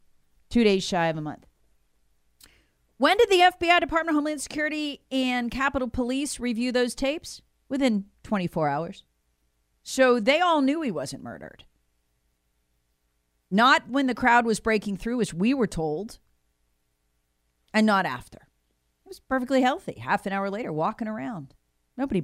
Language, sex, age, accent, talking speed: English, female, 40-59, American, 150 wpm